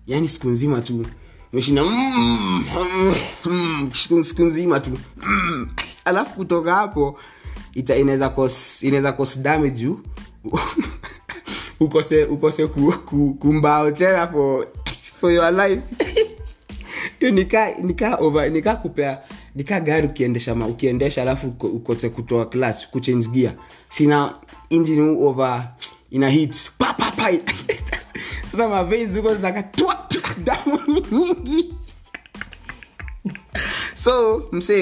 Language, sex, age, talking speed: Swahili, male, 20-39, 70 wpm